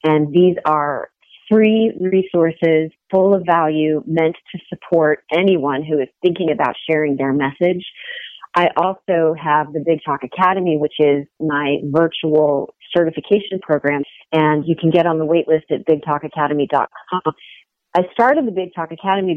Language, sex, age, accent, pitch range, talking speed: English, female, 40-59, American, 150-175 Hz, 150 wpm